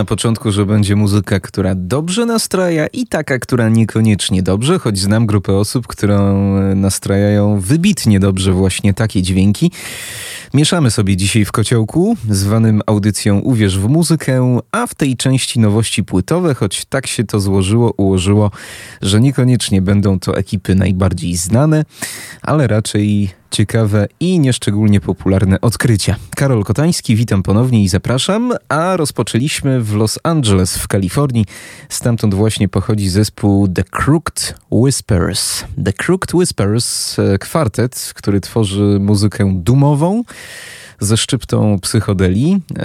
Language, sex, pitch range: Polish, male, 100-130 Hz